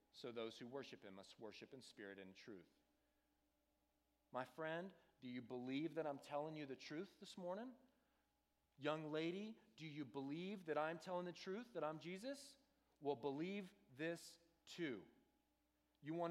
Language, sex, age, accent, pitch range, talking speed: English, male, 40-59, American, 140-220 Hz, 160 wpm